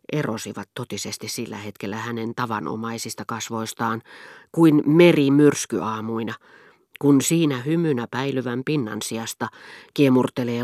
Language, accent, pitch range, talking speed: Finnish, native, 120-175 Hz, 95 wpm